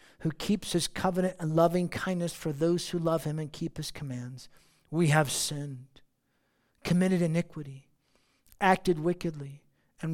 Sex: male